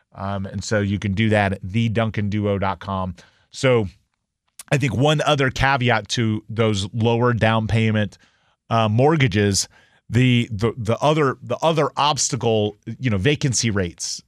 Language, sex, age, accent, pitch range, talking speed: English, male, 30-49, American, 110-130 Hz, 140 wpm